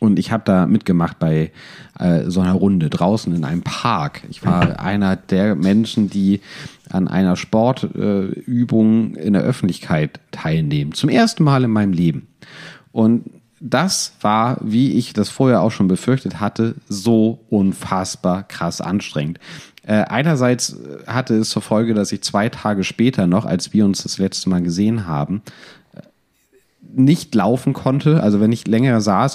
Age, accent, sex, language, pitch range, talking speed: 40-59, German, male, German, 95-125 Hz, 155 wpm